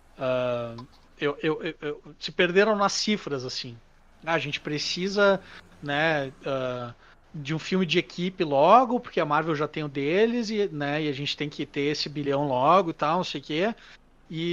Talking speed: 195 wpm